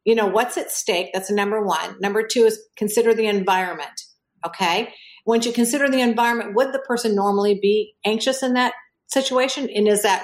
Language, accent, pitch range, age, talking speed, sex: English, American, 195-240 Hz, 50-69, 190 wpm, female